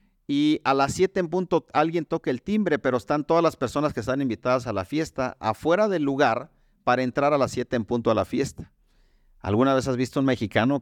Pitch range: 115-160 Hz